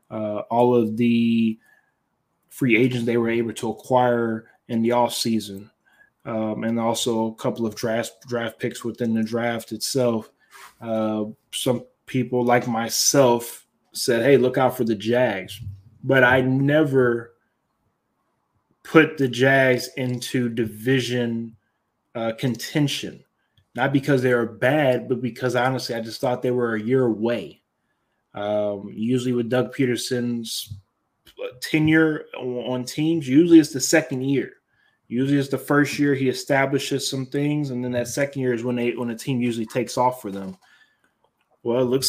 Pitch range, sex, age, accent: 115-130 Hz, male, 20-39, American